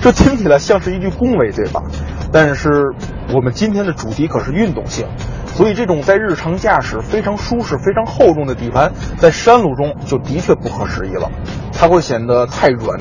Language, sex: Chinese, male